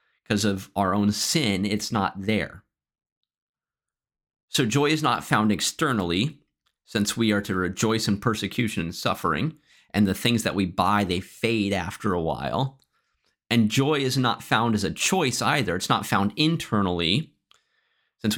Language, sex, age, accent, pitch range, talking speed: English, male, 30-49, American, 105-130 Hz, 155 wpm